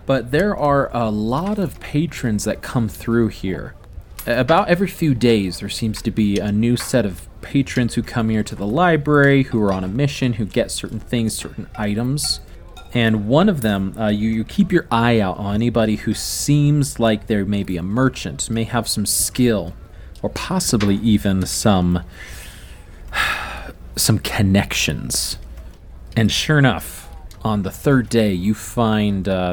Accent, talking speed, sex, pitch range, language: American, 165 wpm, male, 95-120 Hz, English